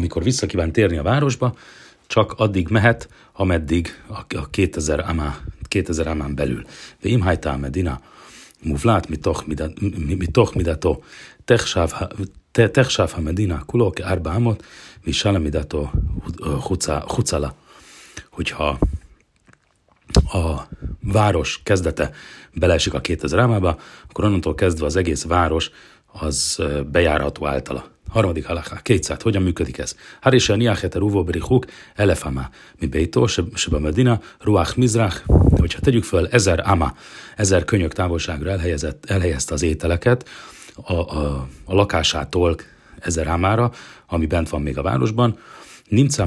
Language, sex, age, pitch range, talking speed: Hungarian, male, 40-59, 80-105 Hz, 115 wpm